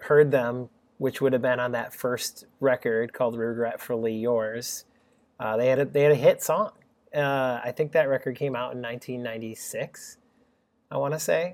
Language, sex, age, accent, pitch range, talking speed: English, male, 30-49, American, 120-145 Hz, 180 wpm